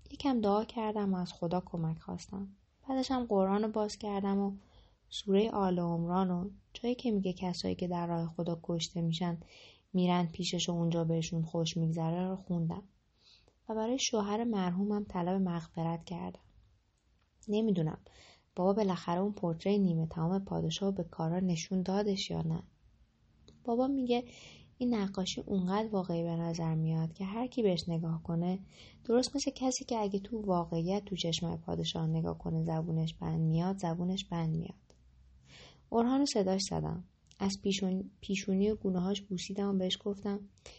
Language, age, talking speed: English, 20-39, 150 wpm